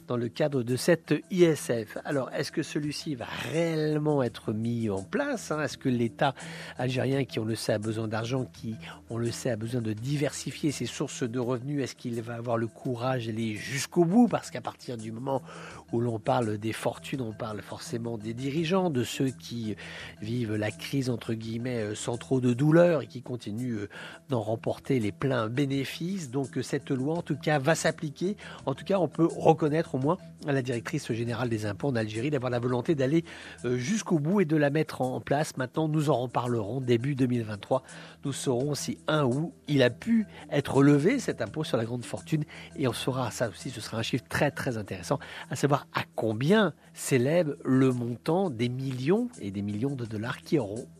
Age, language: 50-69, English